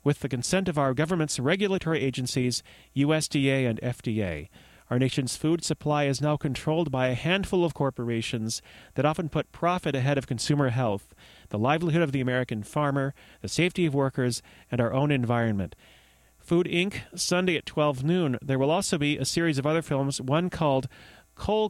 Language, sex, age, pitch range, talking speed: English, male, 40-59, 125-160 Hz, 175 wpm